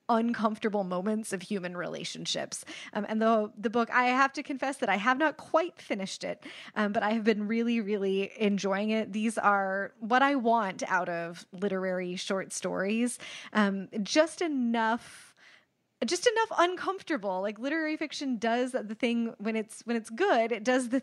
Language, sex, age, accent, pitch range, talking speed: English, female, 20-39, American, 195-265 Hz, 170 wpm